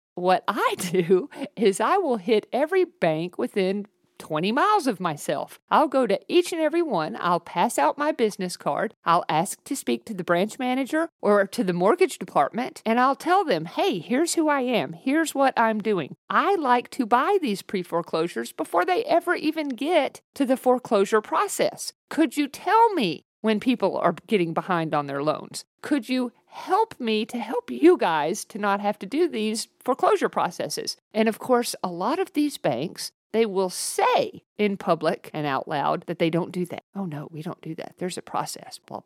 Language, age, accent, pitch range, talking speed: English, 50-69, American, 185-300 Hz, 195 wpm